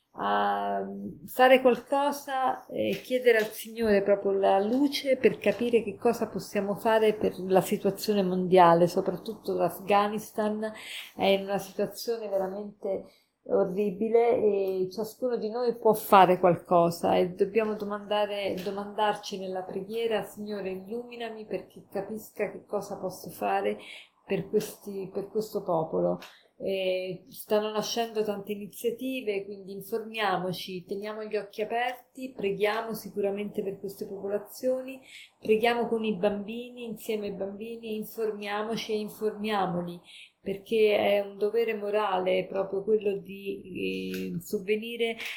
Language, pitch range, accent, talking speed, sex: Italian, 190-220 Hz, native, 120 wpm, female